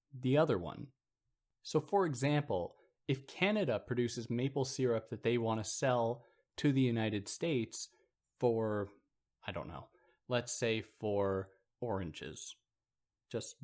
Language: English